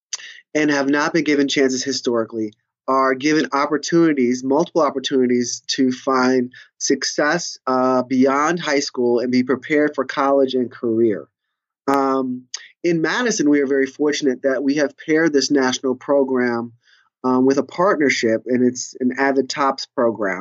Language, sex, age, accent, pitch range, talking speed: English, male, 20-39, American, 130-155 Hz, 145 wpm